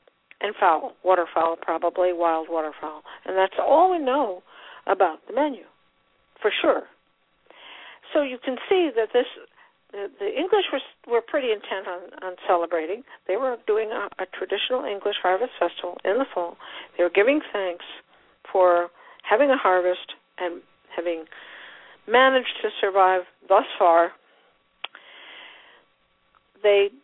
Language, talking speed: English, 135 wpm